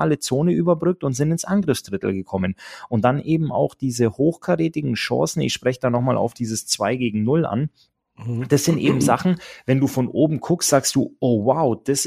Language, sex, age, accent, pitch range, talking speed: German, male, 30-49, German, 110-140 Hz, 195 wpm